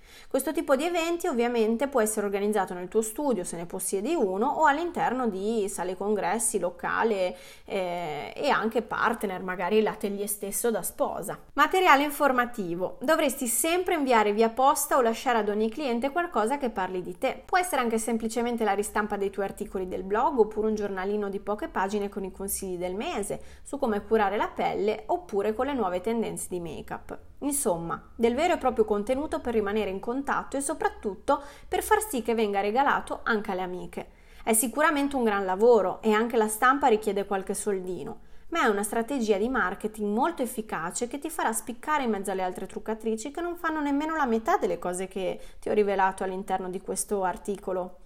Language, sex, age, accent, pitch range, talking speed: Italian, female, 20-39, native, 200-265 Hz, 185 wpm